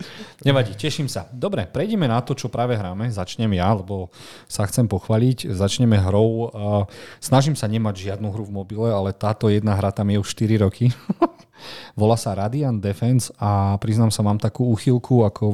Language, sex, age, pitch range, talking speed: Slovak, male, 40-59, 100-120 Hz, 175 wpm